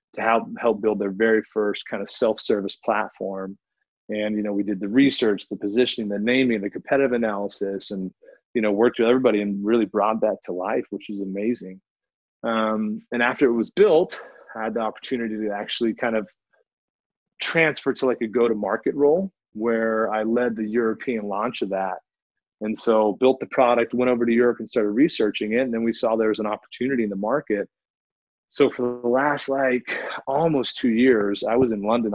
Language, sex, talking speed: English, male, 190 wpm